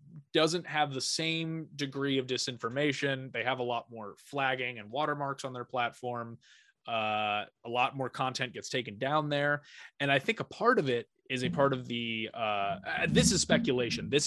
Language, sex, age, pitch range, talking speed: English, male, 20-39, 120-155 Hz, 185 wpm